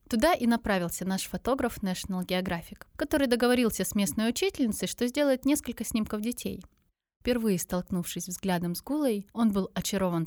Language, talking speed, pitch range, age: Russian, 145 wpm, 180-240 Hz, 20-39